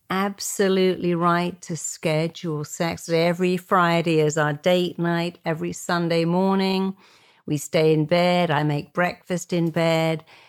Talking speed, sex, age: 130 wpm, female, 50-69